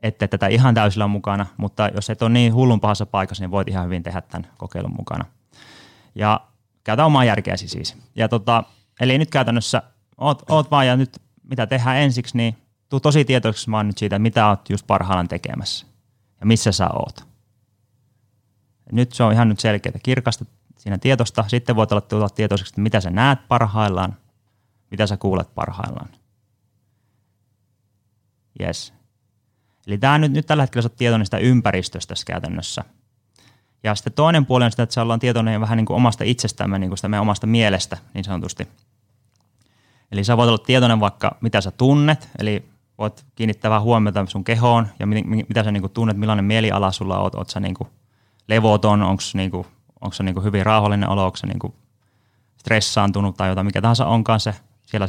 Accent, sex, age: native, male, 30-49